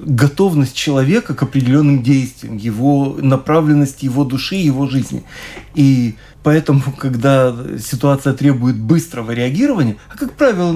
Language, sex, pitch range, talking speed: Russian, male, 135-175 Hz, 115 wpm